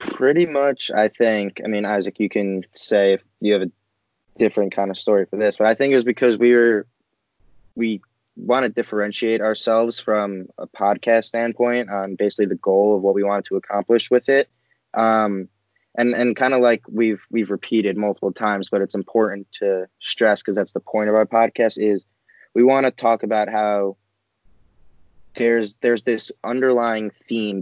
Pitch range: 100-115 Hz